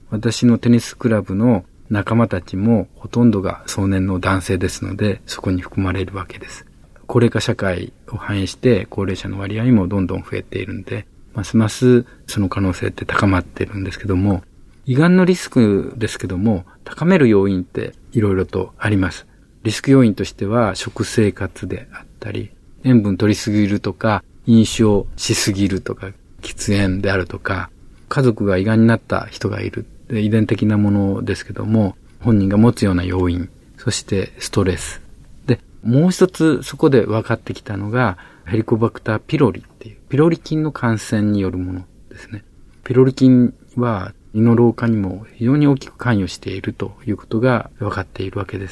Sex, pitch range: male, 95-120 Hz